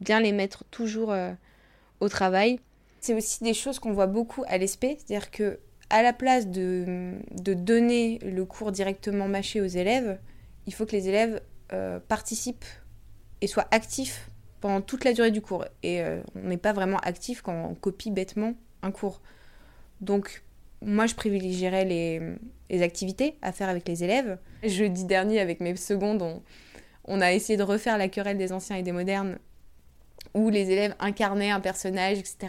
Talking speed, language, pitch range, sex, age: 175 wpm, French, 180-215 Hz, female, 20-39